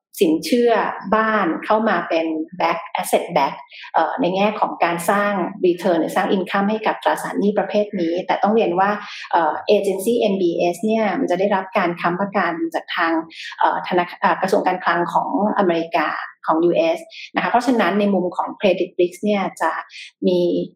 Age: 30-49